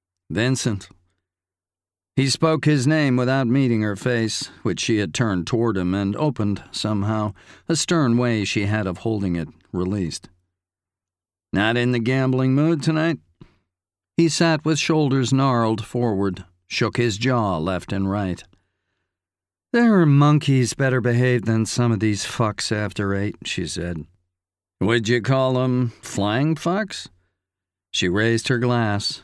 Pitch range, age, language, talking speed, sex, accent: 95-130 Hz, 50-69, English, 140 wpm, male, American